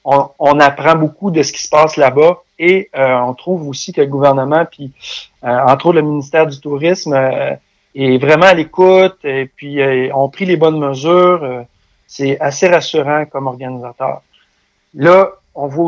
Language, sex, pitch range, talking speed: French, male, 135-175 Hz, 180 wpm